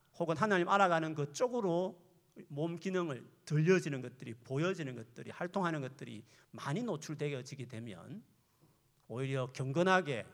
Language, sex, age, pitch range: Korean, male, 40-59, 130-180 Hz